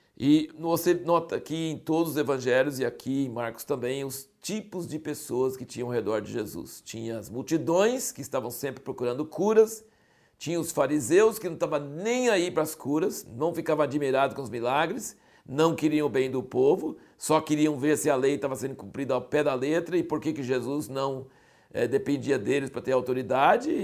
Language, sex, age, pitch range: Portuguese, male, 60-79, 130-165 Hz